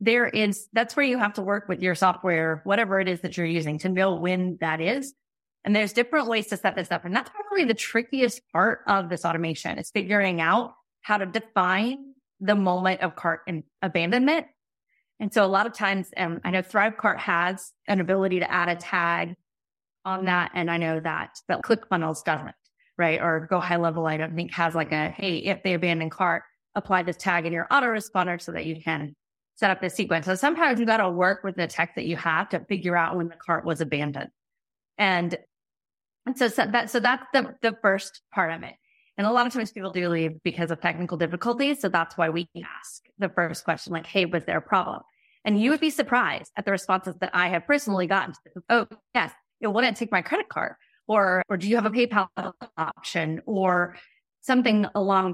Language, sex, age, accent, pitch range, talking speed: English, female, 30-49, American, 170-215 Hz, 215 wpm